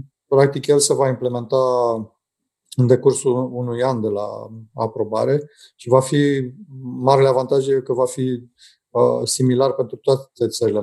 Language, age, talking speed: Romanian, 30-49, 135 wpm